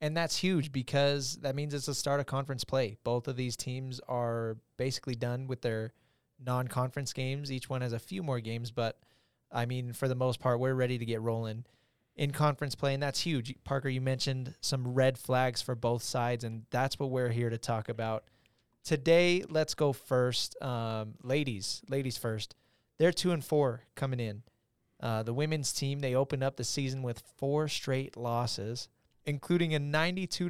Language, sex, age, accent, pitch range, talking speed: English, male, 20-39, American, 120-145 Hz, 190 wpm